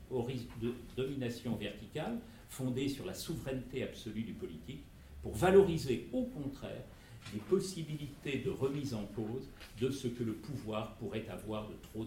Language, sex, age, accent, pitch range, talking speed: French, male, 50-69, French, 105-130 Hz, 145 wpm